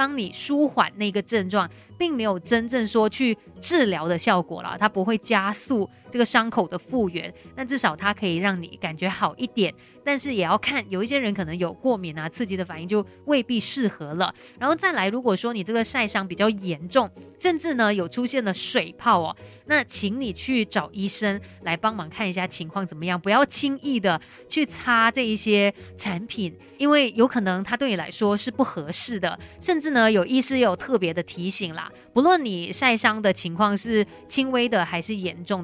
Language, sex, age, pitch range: Chinese, female, 20-39, 185-250 Hz